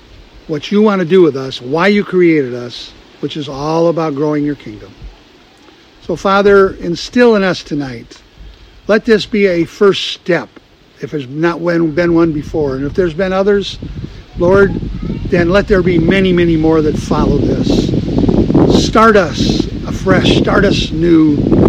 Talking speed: 160 wpm